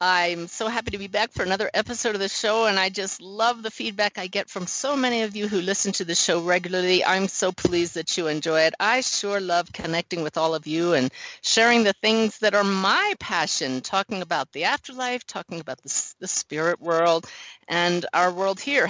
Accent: American